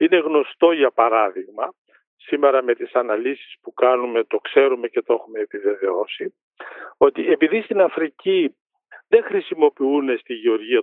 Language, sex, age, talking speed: Greek, male, 60-79, 135 wpm